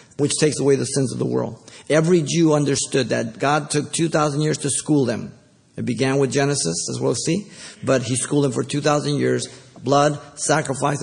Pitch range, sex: 135-160 Hz, male